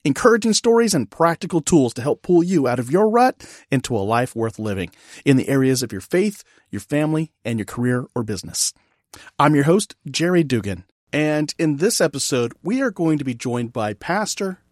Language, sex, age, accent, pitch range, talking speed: English, male, 40-59, American, 125-175 Hz, 195 wpm